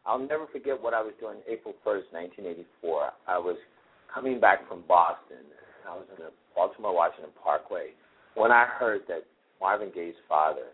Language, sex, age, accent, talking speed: English, male, 50-69, American, 175 wpm